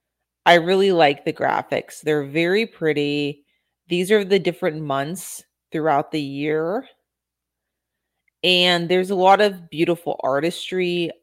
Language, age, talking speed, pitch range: English, 30-49, 125 wpm, 150-180 Hz